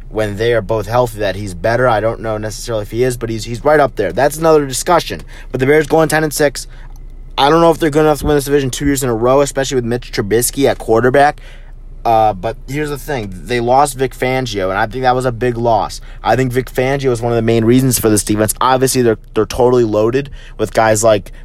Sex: male